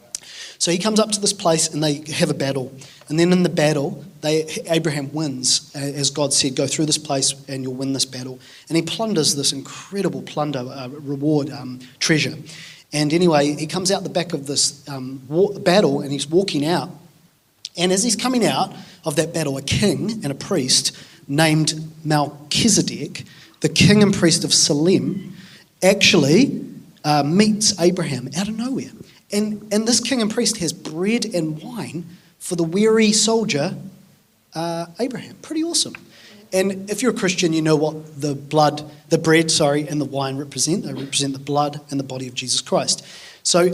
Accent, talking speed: Australian, 180 wpm